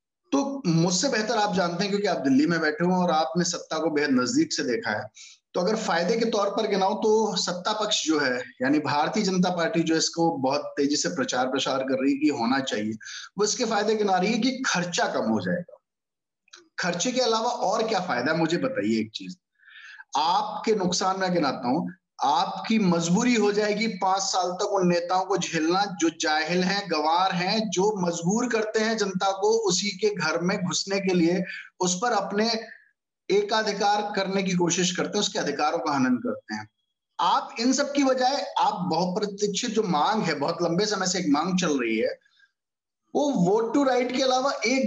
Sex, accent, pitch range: male, native, 175-230 Hz